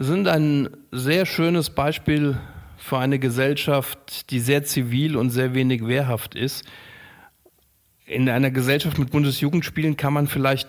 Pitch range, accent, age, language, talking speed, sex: 120-140 Hz, German, 40-59, German, 135 wpm, male